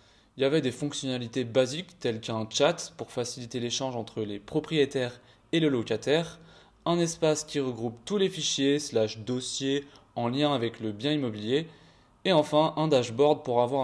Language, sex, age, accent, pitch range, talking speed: French, male, 20-39, French, 120-150 Hz, 170 wpm